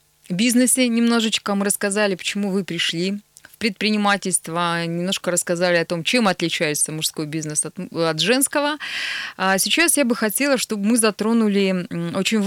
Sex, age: female, 20-39